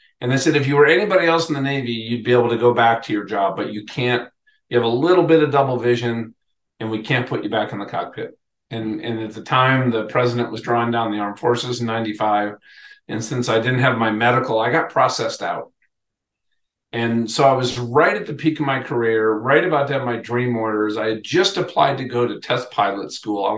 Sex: male